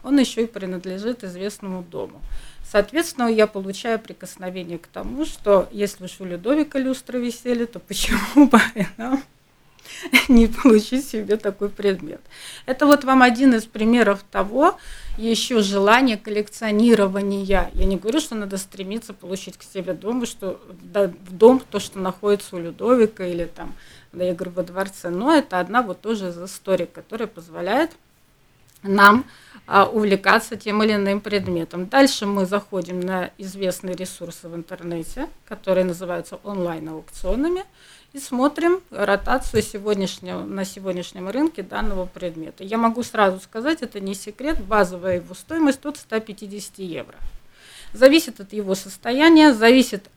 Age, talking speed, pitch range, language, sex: 30-49, 135 wpm, 185-235 Hz, Russian, female